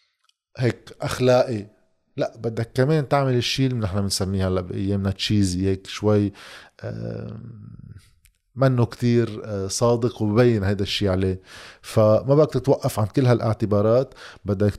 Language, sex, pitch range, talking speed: Arabic, male, 100-120 Hz, 120 wpm